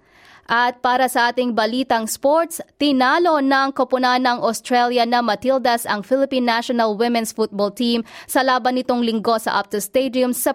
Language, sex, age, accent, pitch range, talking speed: Filipino, female, 20-39, native, 210-265 Hz, 155 wpm